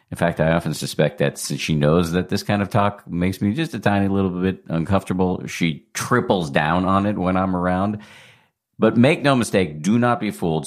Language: English